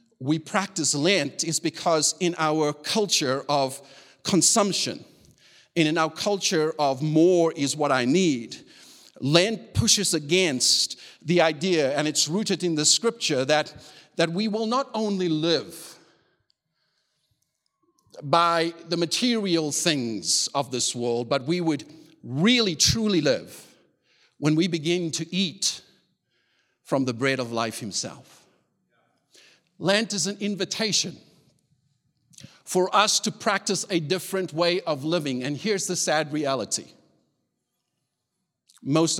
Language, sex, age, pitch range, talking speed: English, male, 50-69, 140-185 Hz, 125 wpm